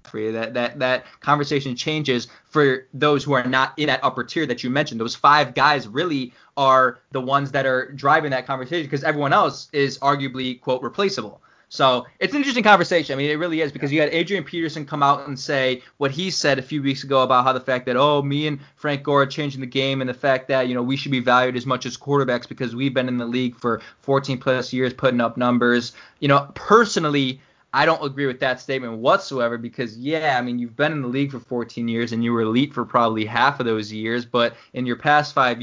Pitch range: 125-150 Hz